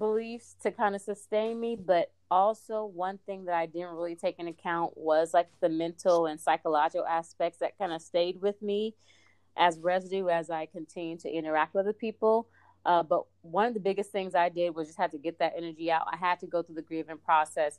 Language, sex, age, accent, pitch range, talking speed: English, female, 30-49, American, 160-200 Hz, 220 wpm